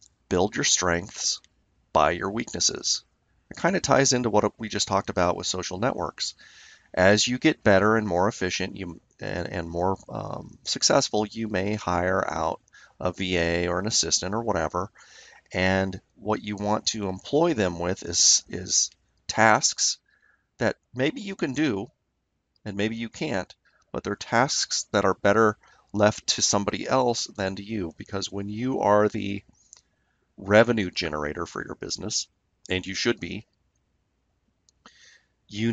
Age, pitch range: 30-49, 90-110 Hz